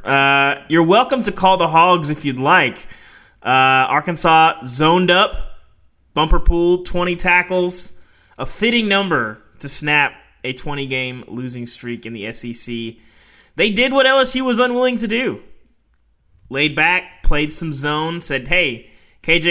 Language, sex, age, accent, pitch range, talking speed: English, male, 20-39, American, 135-185 Hz, 145 wpm